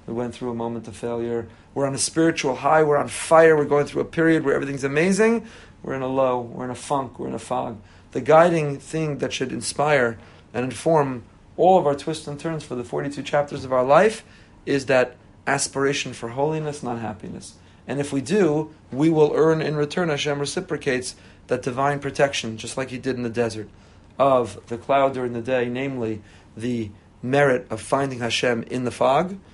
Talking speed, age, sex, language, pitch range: 200 wpm, 40-59, male, English, 115-145 Hz